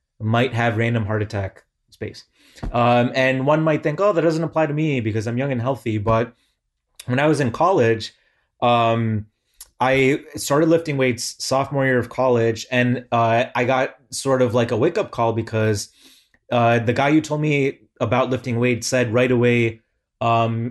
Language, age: English, 30-49